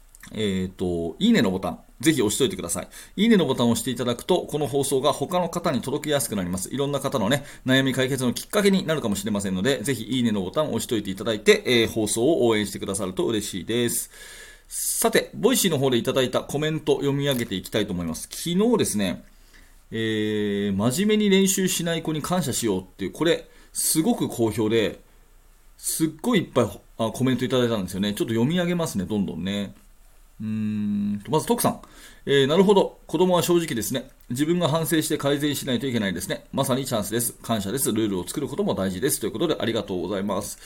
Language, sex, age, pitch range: Japanese, male, 40-59, 115-175 Hz